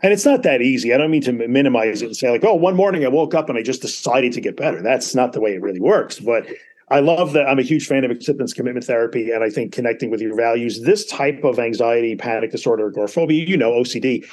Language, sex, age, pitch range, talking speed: English, male, 40-59, 120-160 Hz, 265 wpm